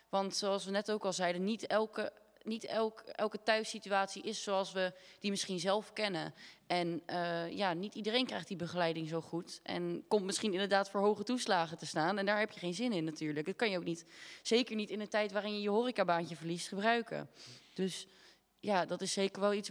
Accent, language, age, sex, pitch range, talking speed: Dutch, Dutch, 20-39, female, 175-210 Hz, 205 wpm